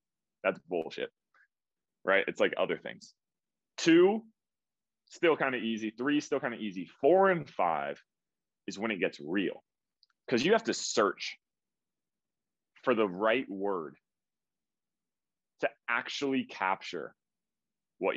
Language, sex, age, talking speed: English, male, 30-49, 125 wpm